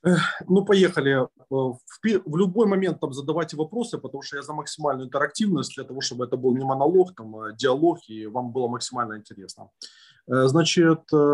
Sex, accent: male, native